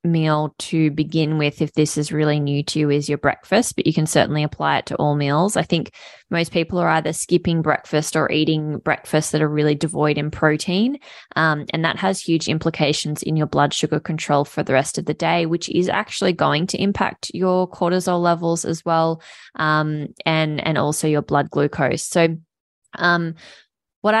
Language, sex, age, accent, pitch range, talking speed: English, female, 20-39, Australian, 150-165 Hz, 195 wpm